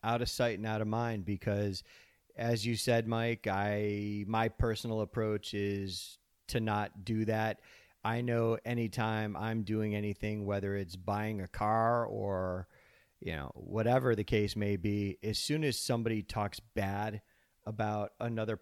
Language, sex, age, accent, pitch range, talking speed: English, male, 40-59, American, 100-115 Hz, 155 wpm